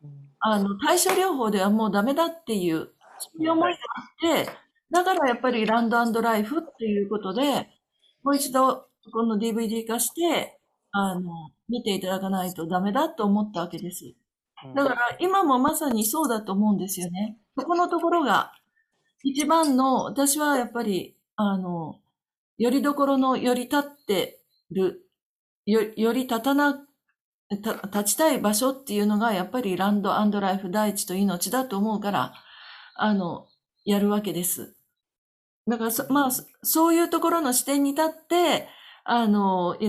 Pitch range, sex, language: 200-275 Hz, female, Japanese